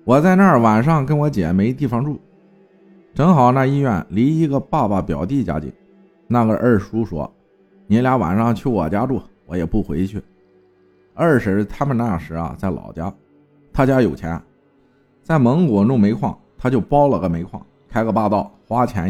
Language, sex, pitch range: Chinese, male, 90-140 Hz